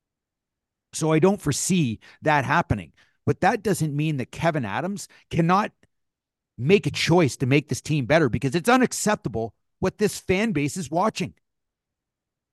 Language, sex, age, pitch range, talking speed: English, male, 50-69, 125-175 Hz, 150 wpm